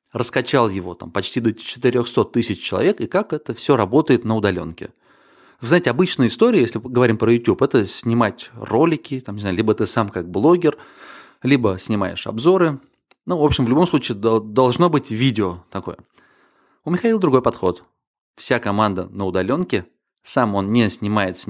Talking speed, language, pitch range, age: 165 wpm, Russian, 100-135 Hz, 30-49